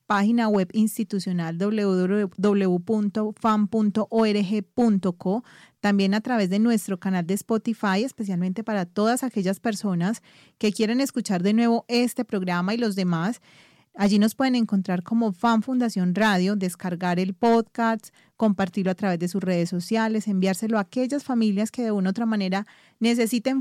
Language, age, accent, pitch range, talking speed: Spanish, 30-49, Colombian, 185-225 Hz, 140 wpm